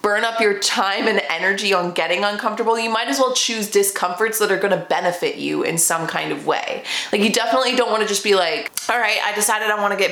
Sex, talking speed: female, 235 wpm